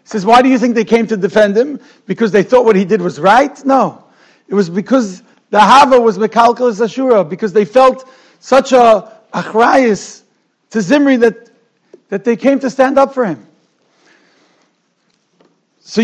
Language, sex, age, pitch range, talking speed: English, male, 60-79, 200-250 Hz, 170 wpm